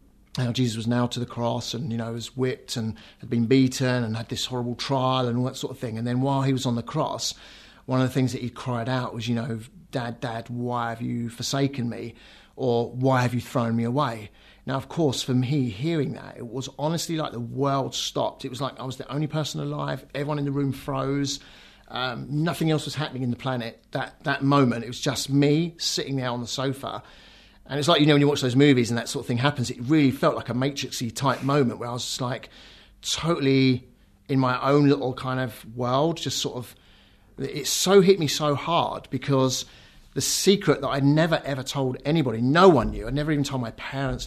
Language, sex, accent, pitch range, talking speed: English, male, British, 120-140 Hz, 235 wpm